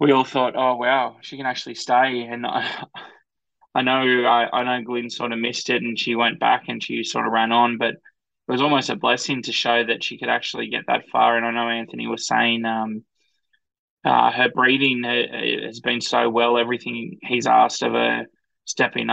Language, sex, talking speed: English, male, 215 wpm